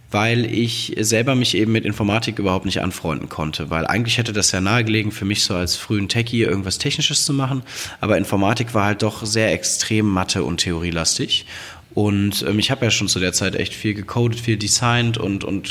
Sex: male